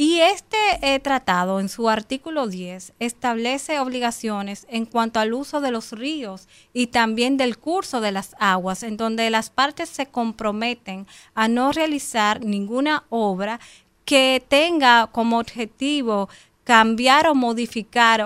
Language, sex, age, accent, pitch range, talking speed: Spanish, female, 30-49, American, 220-270 Hz, 140 wpm